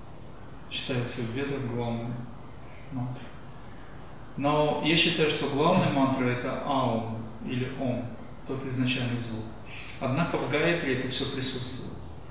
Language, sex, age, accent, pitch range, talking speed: Russian, male, 20-39, native, 125-150 Hz, 115 wpm